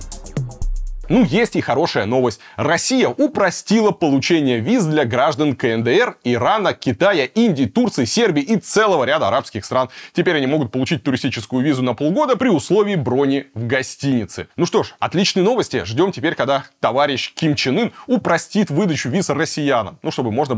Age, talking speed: 20-39, 155 wpm